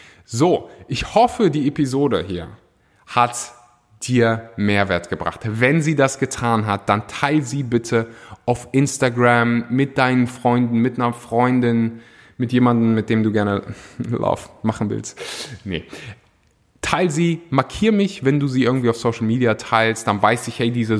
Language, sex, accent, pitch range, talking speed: German, male, German, 110-130 Hz, 155 wpm